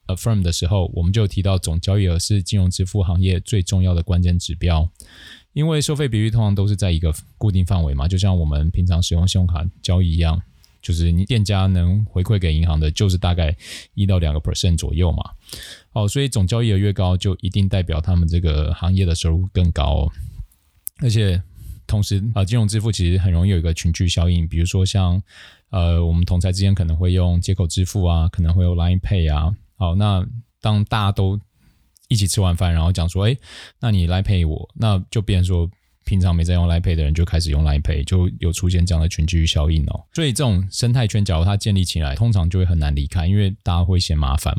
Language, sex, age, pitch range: Chinese, male, 20-39, 85-105 Hz